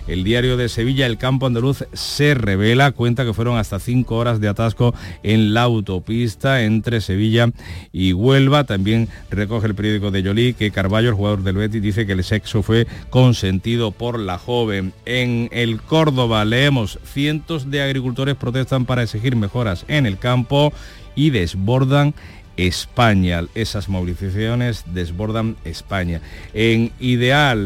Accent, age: Spanish, 50-69